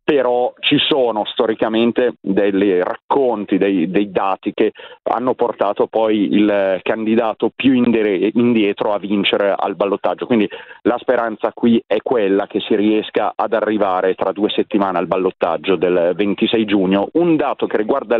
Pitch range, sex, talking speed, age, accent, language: 105-140 Hz, male, 145 wpm, 40-59, native, Italian